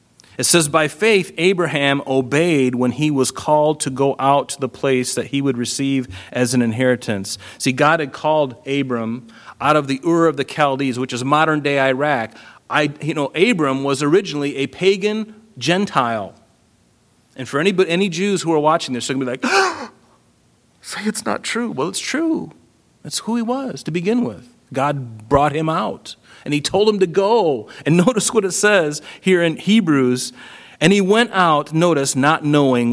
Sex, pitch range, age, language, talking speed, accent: male, 130-185 Hz, 40-59, English, 190 wpm, American